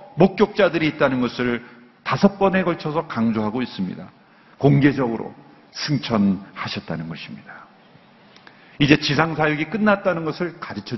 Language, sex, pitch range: Korean, male, 125-175 Hz